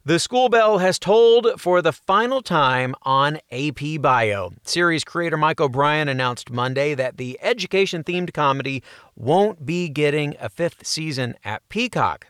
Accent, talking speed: American, 145 wpm